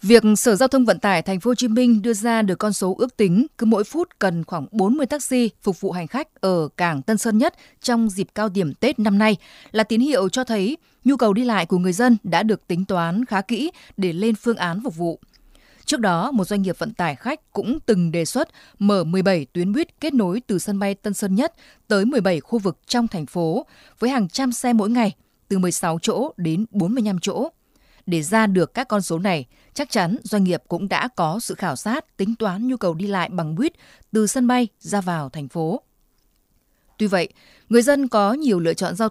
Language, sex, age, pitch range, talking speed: Vietnamese, female, 20-39, 180-240 Hz, 230 wpm